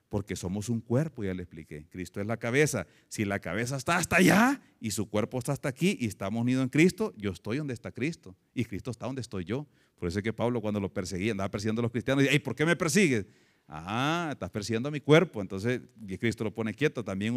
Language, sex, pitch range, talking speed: Spanish, male, 110-150 Hz, 240 wpm